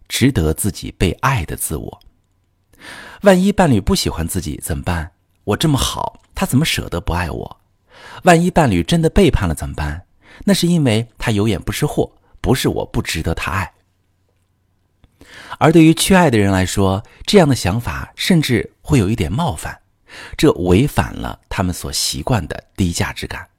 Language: Chinese